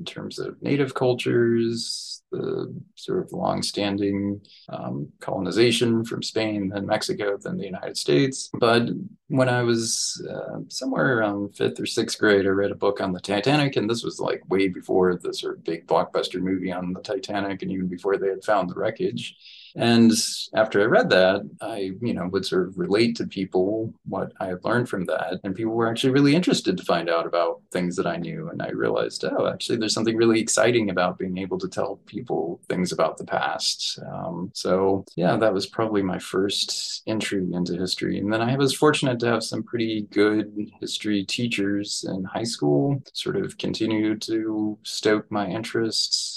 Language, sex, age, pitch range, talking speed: English, male, 30-49, 95-115 Hz, 190 wpm